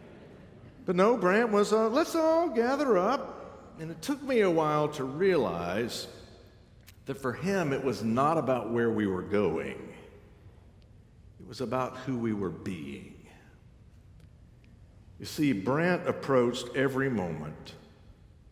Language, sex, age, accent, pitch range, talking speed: English, male, 60-79, American, 95-130 Hz, 135 wpm